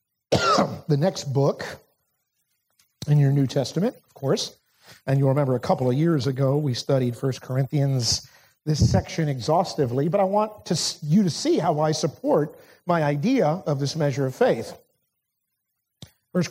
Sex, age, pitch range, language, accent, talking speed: male, 50-69, 135-170 Hz, English, American, 155 wpm